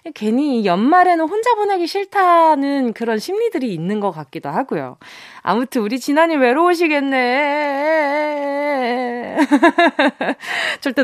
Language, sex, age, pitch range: Korean, female, 20-39, 195-295 Hz